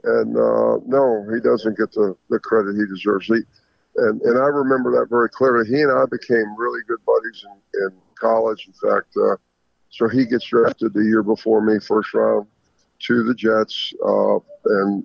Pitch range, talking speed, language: 105-120 Hz, 185 wpm, English